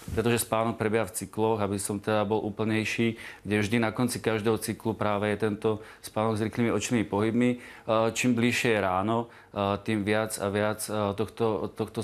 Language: Czech